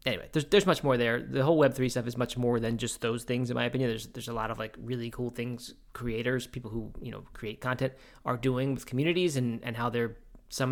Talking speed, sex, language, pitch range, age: 260 wpm, male, English, 120-150 Hz, 20-39